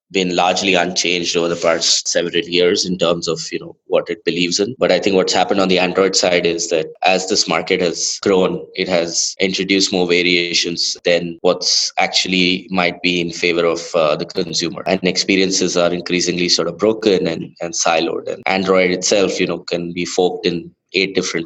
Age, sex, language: 20-39, male, English